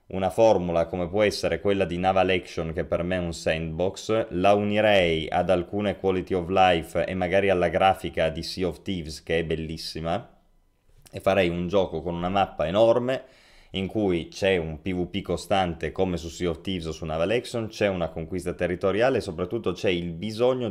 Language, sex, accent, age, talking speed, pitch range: Italian, male, native, 30-49, 190 wpm, 85-105 Hz